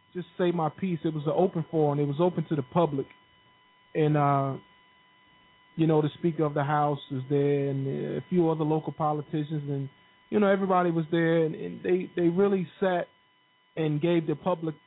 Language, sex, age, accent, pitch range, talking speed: English, male, 20-39, American, 145-175 Hz, 195 wpm